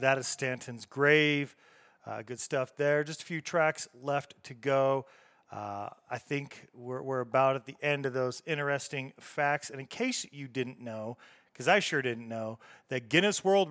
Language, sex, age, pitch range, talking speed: English, male, 30-49, 135-165 Hz, 185 wpm